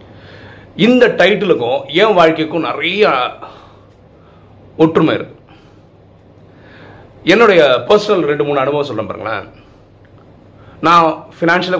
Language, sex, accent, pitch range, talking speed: Tamil, male, native, 125-180 Hz, 75 wpm